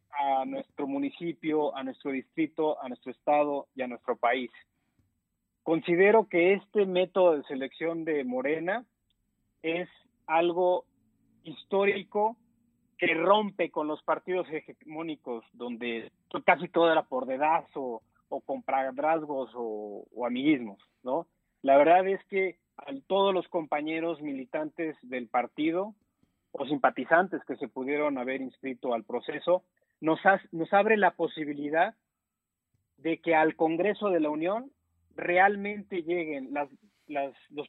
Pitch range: 140-185 Hz